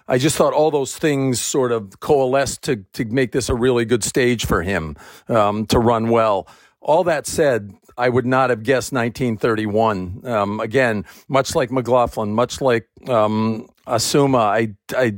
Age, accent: 50-69, American